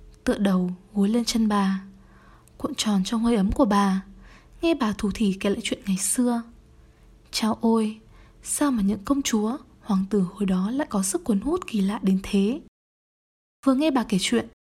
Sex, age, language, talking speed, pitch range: female, 20-39, Vietnamese, 190 wpm, 200-260 Hz